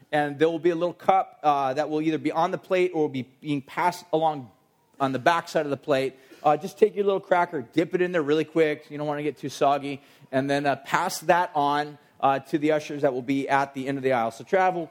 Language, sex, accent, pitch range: English, male, American, 125-155 Hz